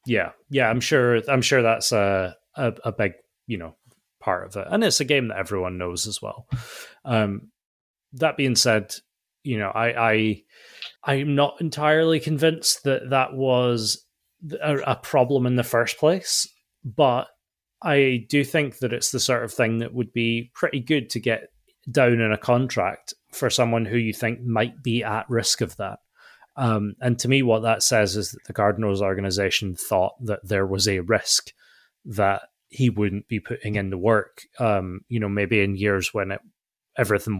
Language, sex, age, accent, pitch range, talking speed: English, male, 30-49, British, 100-125 Hz, 185 wpm